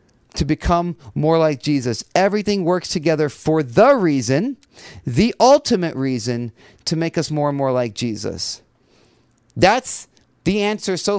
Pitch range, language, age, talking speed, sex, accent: 115-165 Hz, English, 40-59, 140 wpm, male, American